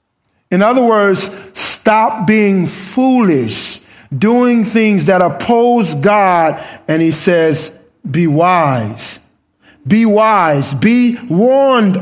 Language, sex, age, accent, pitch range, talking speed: English, male, 50-69, American, 155-215 Hz, 100 wpm